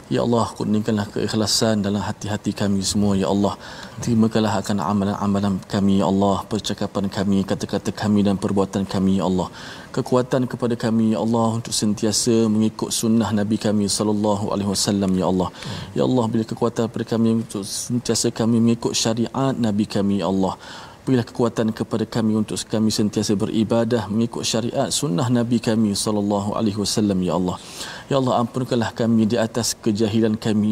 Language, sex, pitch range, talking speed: Malayalam, male, 105-115 Hz, 160 wpm